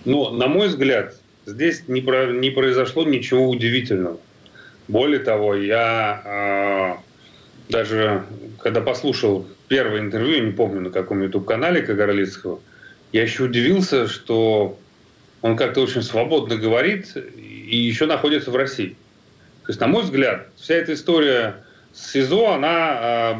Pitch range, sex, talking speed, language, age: 105-135 Hz, male, 130 wpm, Russian, 30-49